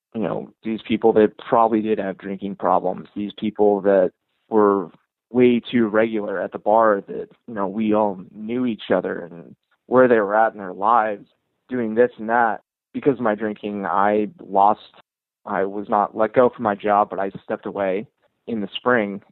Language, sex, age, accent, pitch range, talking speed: English, male, 20-39, American, 100-110 Hz, 190 wpm